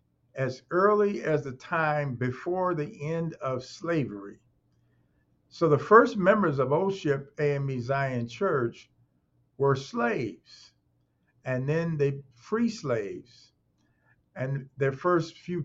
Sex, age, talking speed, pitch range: male, 50-69, 115 wpm, 120-160 Hz